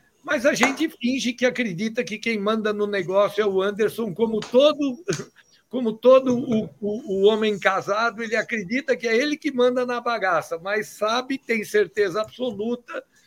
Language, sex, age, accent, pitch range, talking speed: Portuguese, male, 60-79, Brazilian, 160-210 Hz, 165 wpm